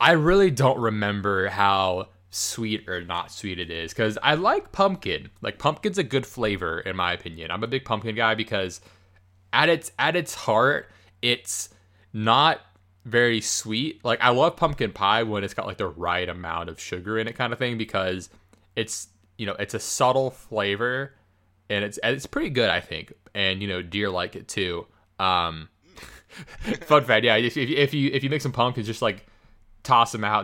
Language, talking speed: English, 190 wpm